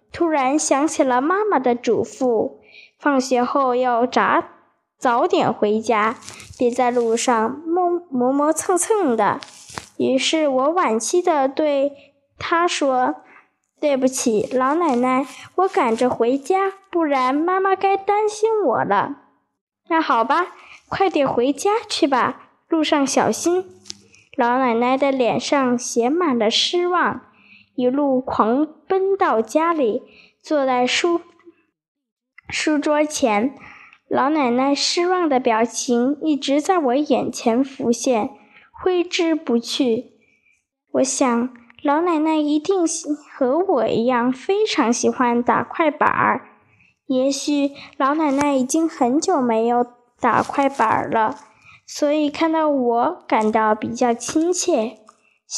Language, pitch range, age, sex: Chinese, 245-330 Hz, 10-29, female